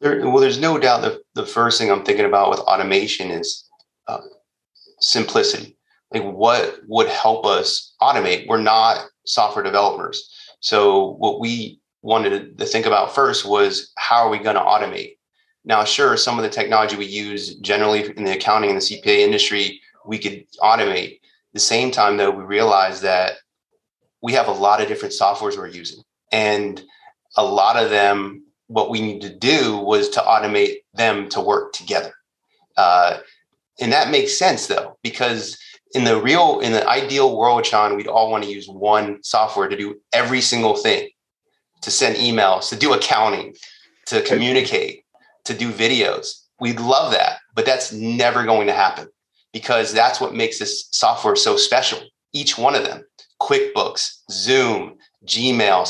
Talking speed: 165 wpm